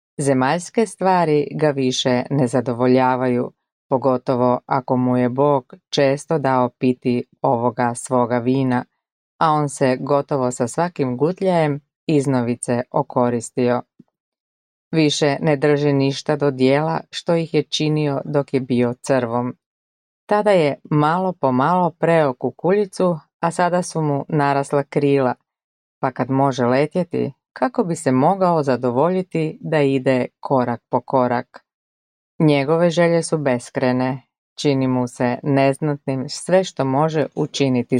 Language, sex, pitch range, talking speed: Croatian, female, 130-155 Hz, 125 wpm